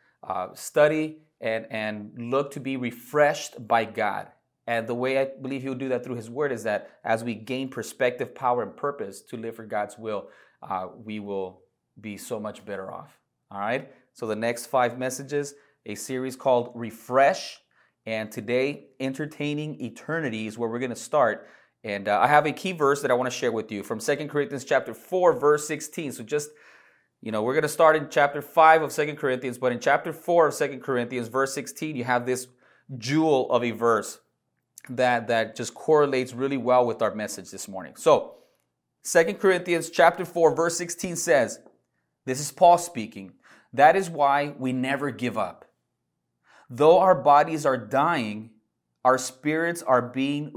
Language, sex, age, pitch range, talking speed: English, male, 30-49, 120-150 Hz, 185 wpm